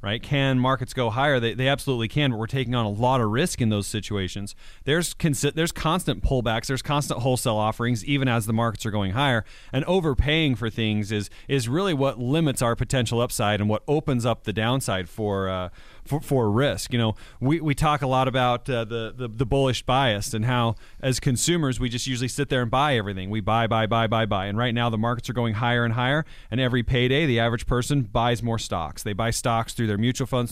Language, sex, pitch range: English, male, 110-135 Hz